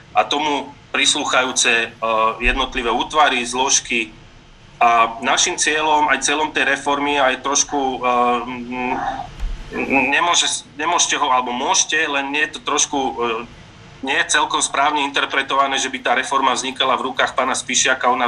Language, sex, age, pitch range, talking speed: Slovak, male, 30-49, 120-140 Hz, 150 wpm